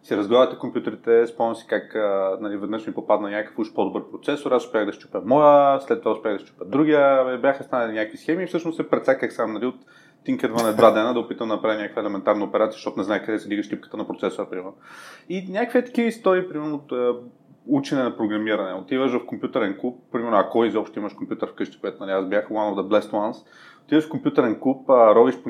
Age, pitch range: 30-49, 110-150 Hz